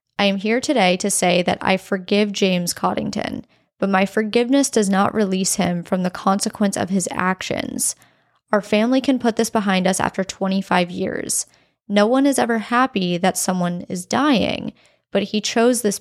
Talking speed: 175 wpm